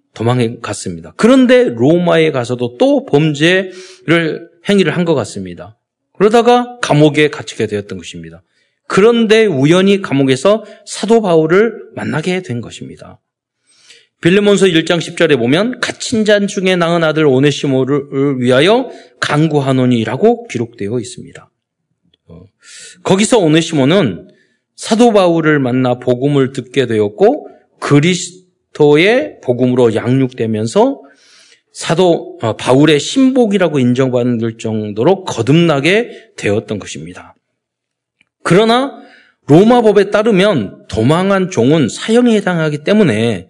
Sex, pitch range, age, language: male, 125-205 Hz, 40-59, Korean